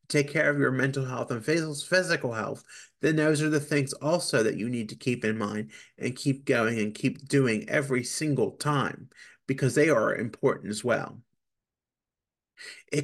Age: 30-49